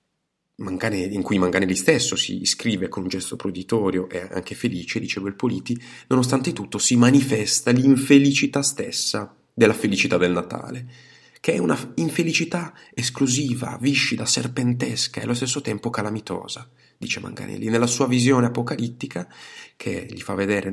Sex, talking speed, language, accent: male, 140 wpm, Italian, native